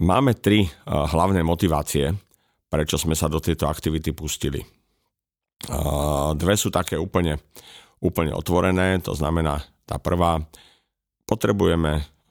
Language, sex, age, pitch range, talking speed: Slovak, male, 50-69, 80-95 Hz, 105 wpm